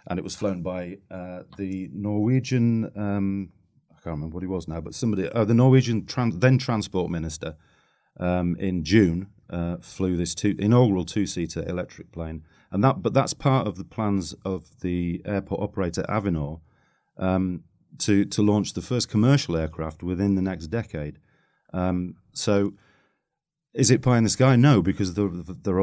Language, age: English, 40-59